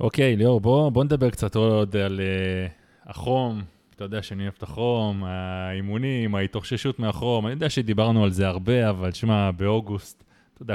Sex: male